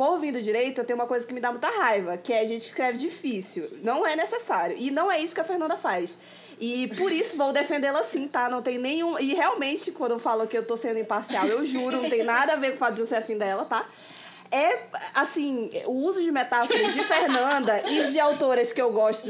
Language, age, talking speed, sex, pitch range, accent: Portuguese, 20-39, 245 wpm, female, 230-315 Hz, Brazilian